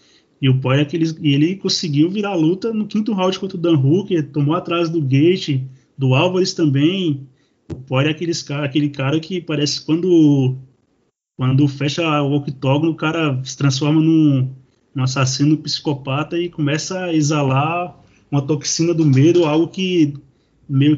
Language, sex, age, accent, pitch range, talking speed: Portuguese, male, 20-39, Brazilian, 135-160 Hz, 165 wpm